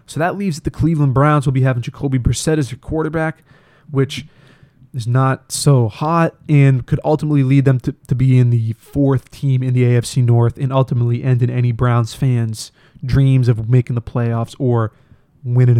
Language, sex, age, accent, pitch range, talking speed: English, male, 20-39, American, 125-145 Hz, 185 wpm